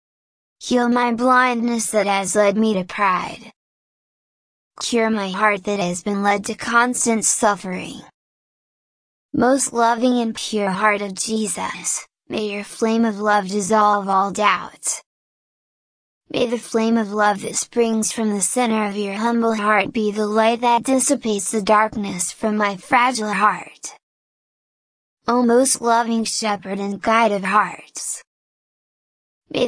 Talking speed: 140 wpm